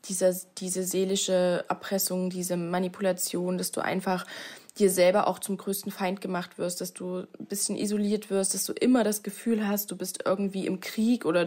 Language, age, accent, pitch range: German, 20-39, German, 185-220 Hz